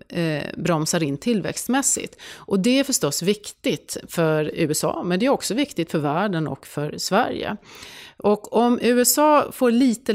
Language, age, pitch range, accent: Swedish, 30-49, 155-215 Hz, native